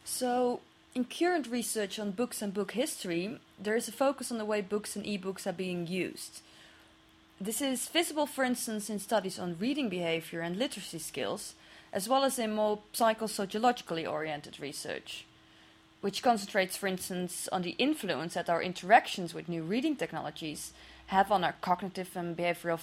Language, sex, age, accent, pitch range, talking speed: English, female, 20-39, Dutch, 170-235 Hz, 165 wpm